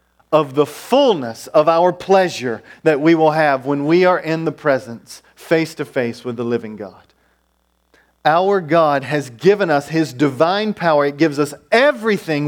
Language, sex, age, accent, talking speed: English, male, 40-59, American, 170 wpm